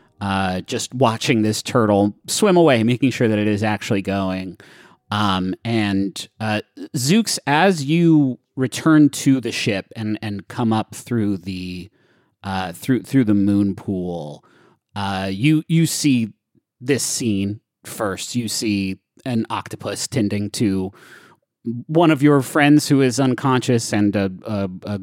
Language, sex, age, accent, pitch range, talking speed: English, male, 30-49, American, 105-135 Hz, 145 wpm